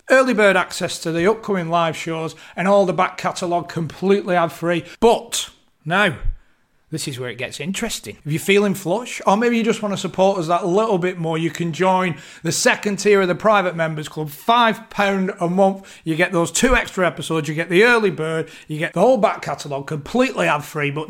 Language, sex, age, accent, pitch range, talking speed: English, male, 30-49, British, 160-205 Hz, 210 wpm